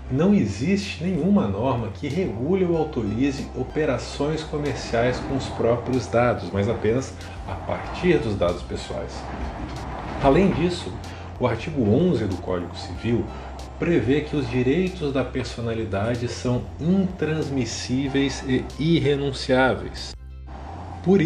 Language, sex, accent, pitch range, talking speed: Portuguese, male, Brazilian, 95-140 Hz, 115 wpm